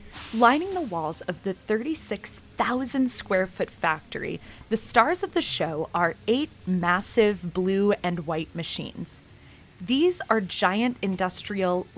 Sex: female